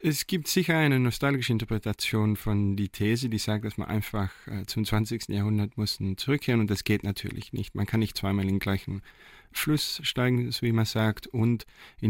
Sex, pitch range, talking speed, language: male, 100-125 Hz, 195 wpm, German